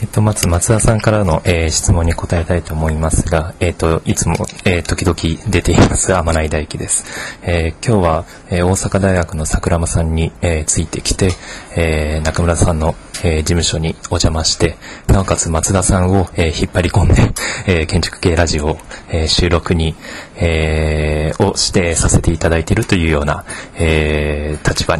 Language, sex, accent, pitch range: Japanese, male, native, 80-100 Hz